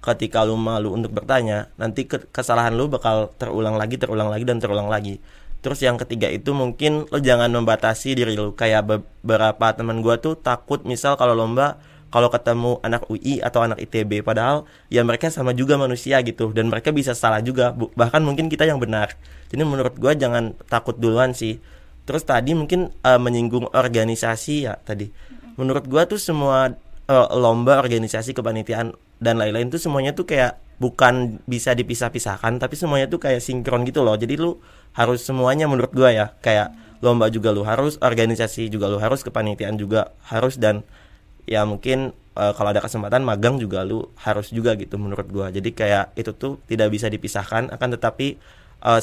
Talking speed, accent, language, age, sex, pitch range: 175 wpm, native, Indonesian, 20-39, male, 110-130 Hz